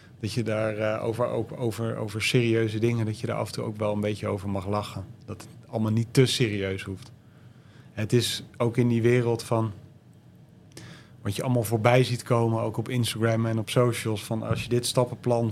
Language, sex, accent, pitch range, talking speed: Dutch, male, Dutch, 110-125 Hz, 215 wpm